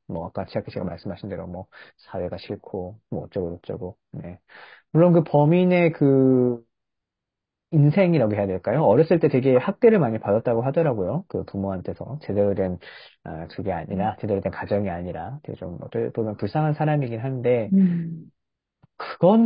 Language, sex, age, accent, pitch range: Korean, male, 30-49, native, 105-170 Hz